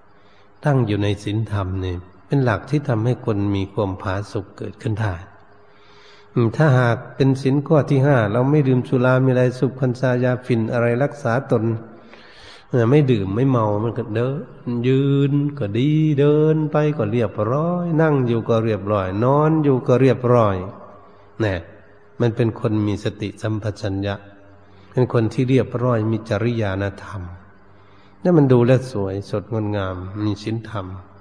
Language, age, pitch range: Thai, 60-79, 100-130 Hz